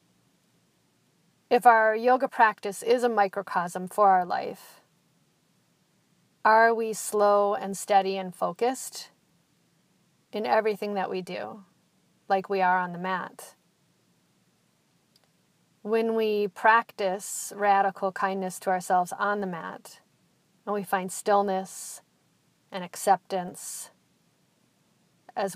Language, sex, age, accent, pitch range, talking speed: English, female, 40-59, American, 185-210 Hz, 105 wpm